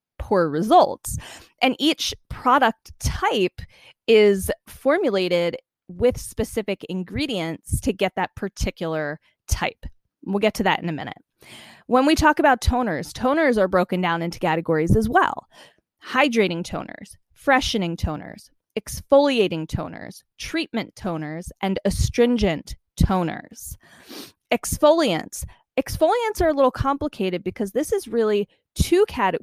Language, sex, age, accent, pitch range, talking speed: English, female, 20-39, American, 180-245 Hz, 120 wpm